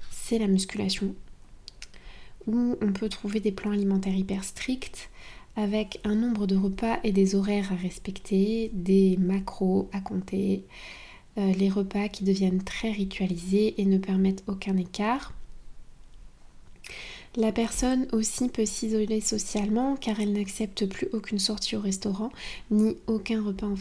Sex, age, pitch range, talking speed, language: female, 20-39, 190-215 Hz, 140 wpm, French